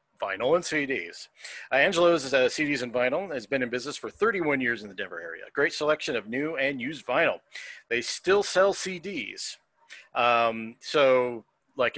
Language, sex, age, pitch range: English, male, 40-59, 120-165 Hz